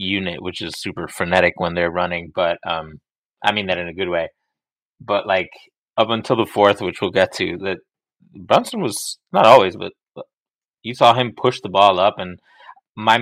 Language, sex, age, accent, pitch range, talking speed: English, male, 20-39, American, 90-105 Hz, 190 wpm